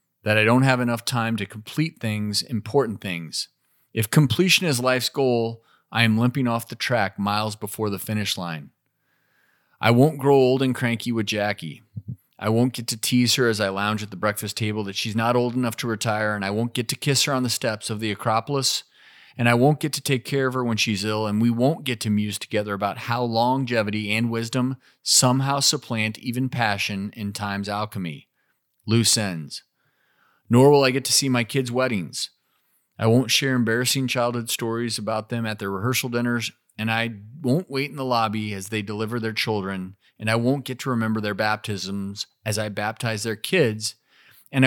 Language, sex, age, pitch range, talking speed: English, male, 30-49, 105-130 Hz, 200 wpm